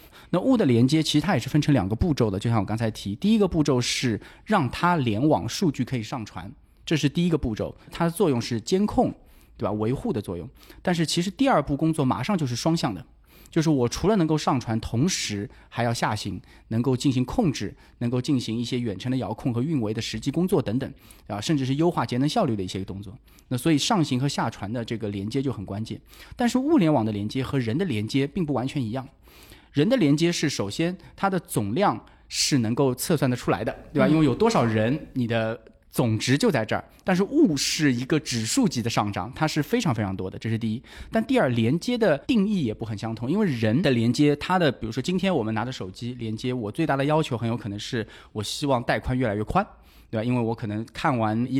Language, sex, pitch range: Chinese, male, 110-155 Hz